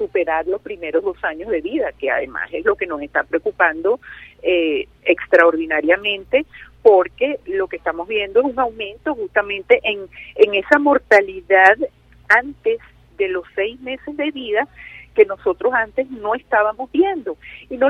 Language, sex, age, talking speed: Spanish, female, 50-69, 150 wpm